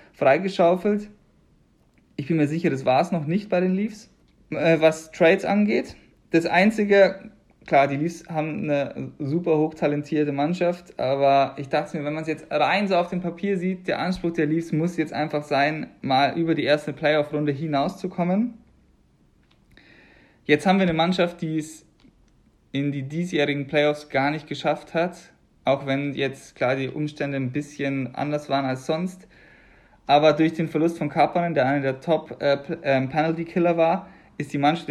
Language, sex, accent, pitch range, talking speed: German, male, German, 140-170 Hz, 170 wpm